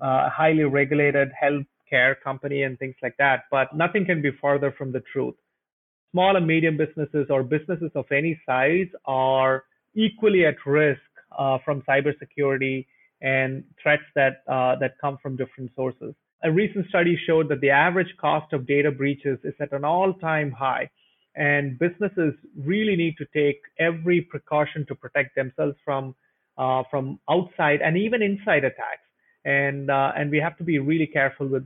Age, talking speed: 30-49, 165 wpm